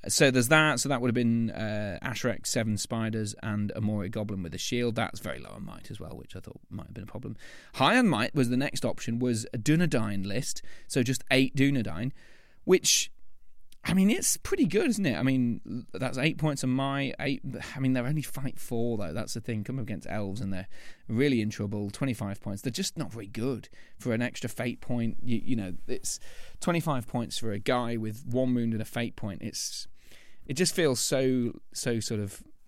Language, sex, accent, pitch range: English, male, British, 105-135 Hz